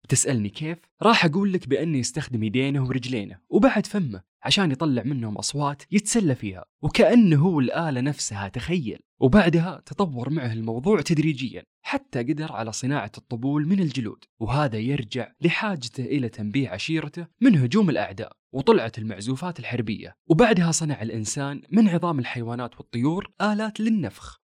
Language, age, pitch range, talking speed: Arabic, 20-39, 120-170 Hz, 135 wpm